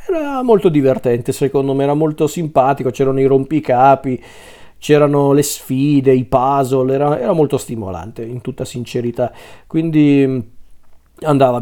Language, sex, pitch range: Italian, male, 130-170 Hz